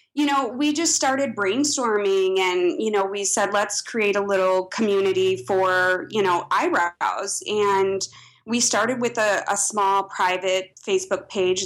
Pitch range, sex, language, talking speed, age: 185-235 Hz, female, English, 155 wpm, 20-39